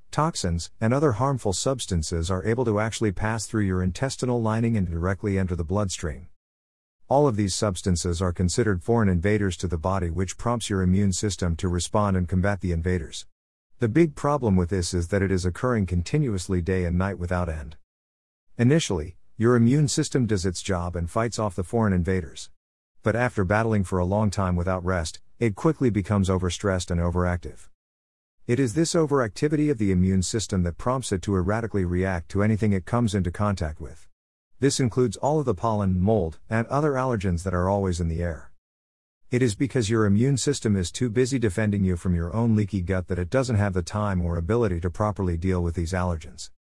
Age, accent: 50-69, American